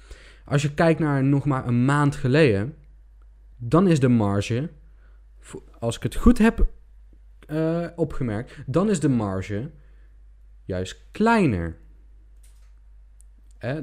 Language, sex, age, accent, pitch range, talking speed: Dutch, male, 20-39, Dutch, 105-155 Hz, 115 wpm